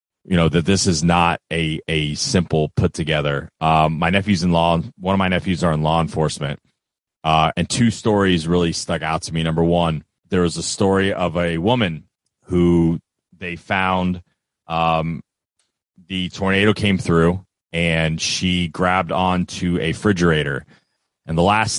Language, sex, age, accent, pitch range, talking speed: English, male, 30-49, American, 80-95 Hz, 160 wpm